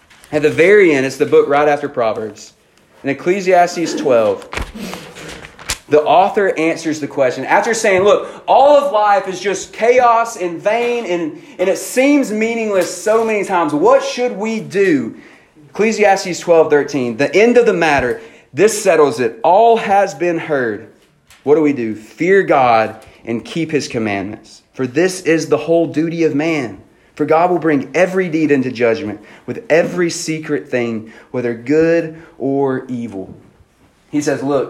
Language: English